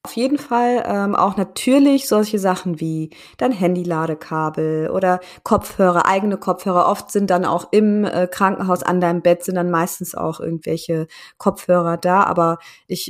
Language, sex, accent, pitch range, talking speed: German, female, German, 175-215 Hz, 155 wpm